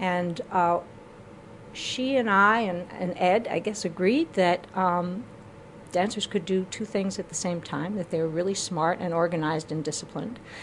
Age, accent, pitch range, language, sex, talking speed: 50-69, American, 165-190 Hz, English, female, 175 wpm